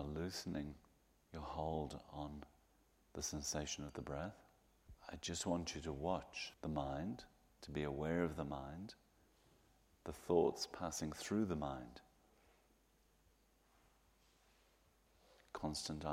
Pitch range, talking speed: 75-85 Hz, 110 wpm